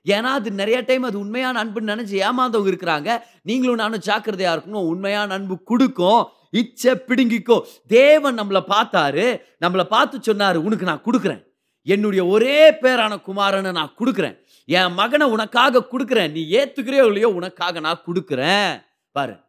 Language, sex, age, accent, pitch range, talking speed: Tamil, male, 30-49, native, 185-265 Hz, 60 wpm